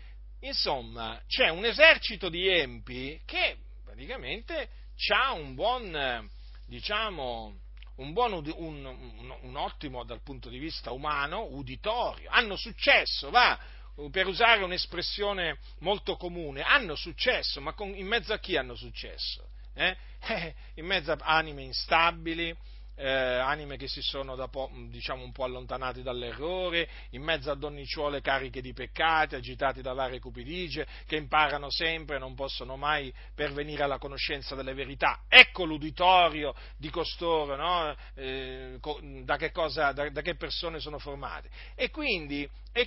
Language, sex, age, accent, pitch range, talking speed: Italian, male, 40-59, native, 130-170 Hz, 140 wpm